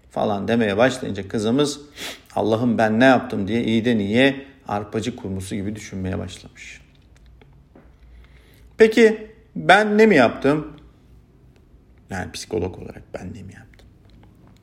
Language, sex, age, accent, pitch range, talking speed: Turkish, male, 50-69, native, 100-125 Hz, 120 wpm